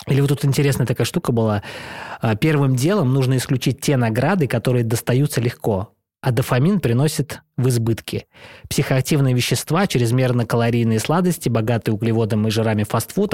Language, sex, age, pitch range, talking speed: Russian, male, 20-39, 115-145 Hz, 140 wpm